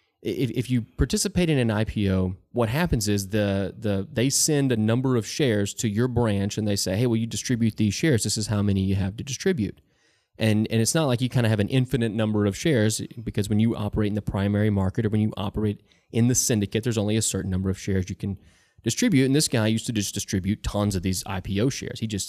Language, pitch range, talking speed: English, 105-135 Hz, 240 wpm